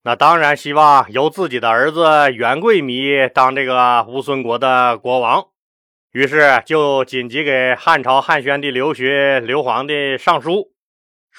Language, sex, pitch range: Chinese, male, 130-160 Hz